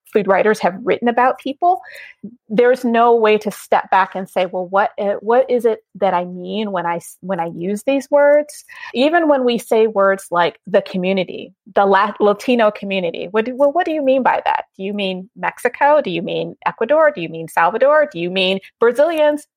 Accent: American